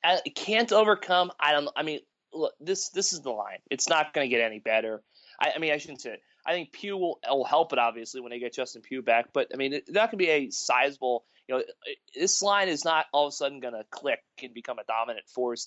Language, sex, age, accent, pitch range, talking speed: English, male, 30-49, American, 120-180 Hz, 265 wpm